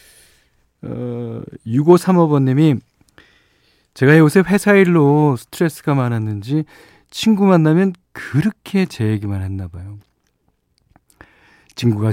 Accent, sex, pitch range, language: native, male, 100-150 Hz, Korean